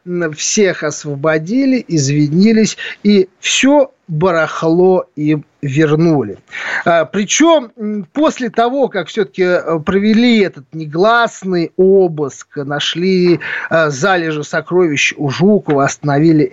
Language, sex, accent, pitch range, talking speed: Russian, male, native, 160-225 Hz, 85 wpm